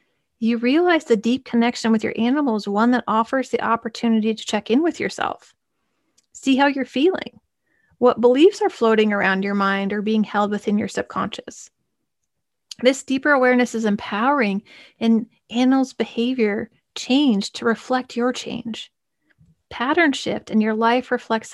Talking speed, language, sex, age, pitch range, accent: 155 wpm, English, female, 30-49, 210-255 Hz, American